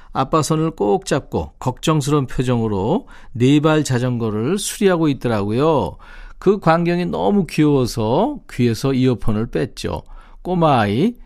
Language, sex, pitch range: Korean, male, 120-160 Hz